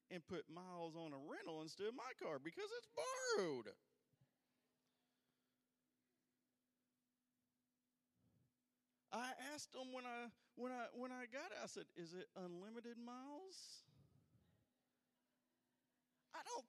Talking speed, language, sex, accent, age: 115 wpm, English, male, American, 40-59